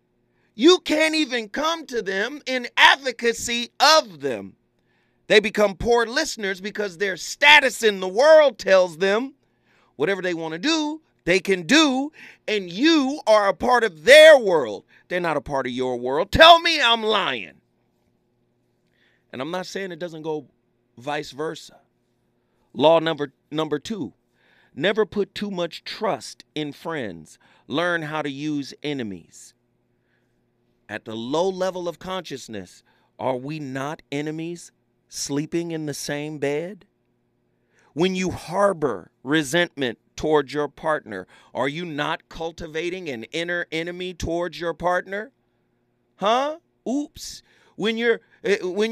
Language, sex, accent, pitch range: English, male, American, 155-225 Hz